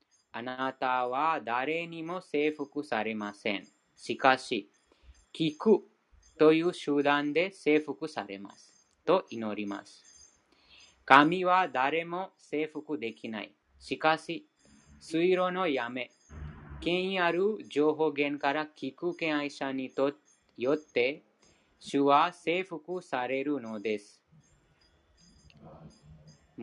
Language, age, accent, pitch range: Japanese, 30-49, Indian, 120-170 Hz